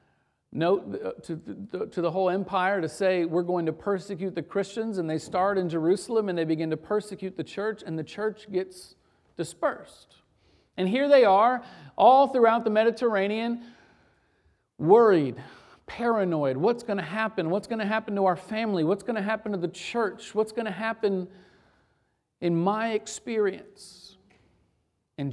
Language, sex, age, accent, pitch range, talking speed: English, male, 50-69, American, 155-205 Hz, 160 wpm